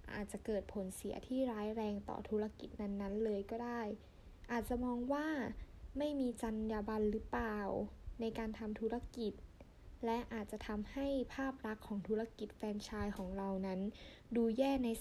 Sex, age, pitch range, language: female, 10-29, 205-245 Hz, Thai